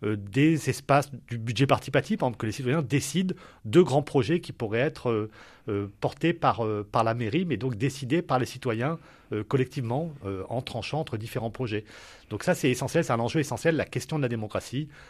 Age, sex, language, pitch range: 40-59, male, French, 120-160 Hz